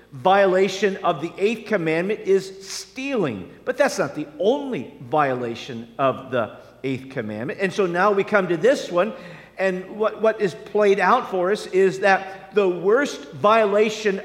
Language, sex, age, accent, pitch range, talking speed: English, male, 50-69, American, 155-225 Hz, 160 wpm